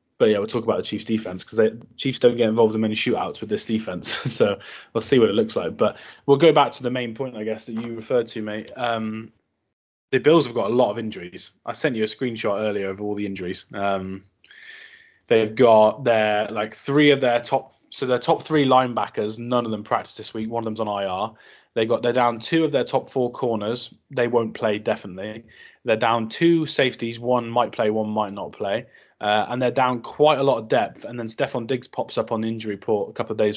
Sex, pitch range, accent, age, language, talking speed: male, 110-140 Hz, British, 20-39, English, 240 wpm